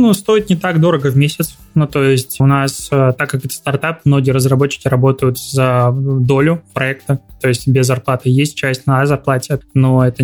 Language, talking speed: Russian, 190 wpm